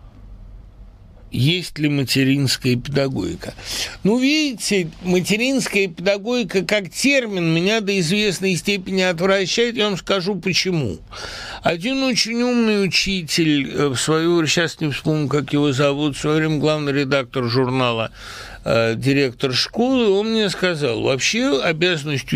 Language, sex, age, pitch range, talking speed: Russian, male, 60-79, 115-180 Hz, 120 wpm